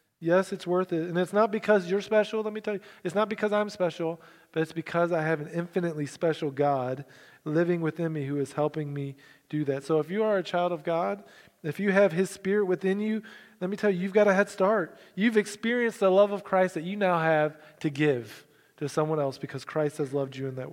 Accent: American